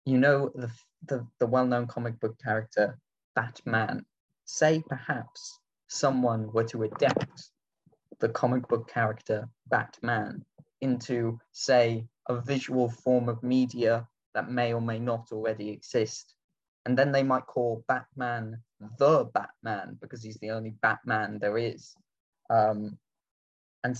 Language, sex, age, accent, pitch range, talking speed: English, male, 10-29, British, 110-125 Hz, 130 wpm